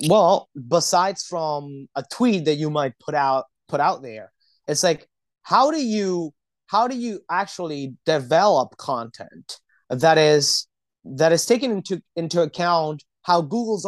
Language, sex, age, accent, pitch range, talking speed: English, male, 30-49, American, 135-175 Hz, 145 wpm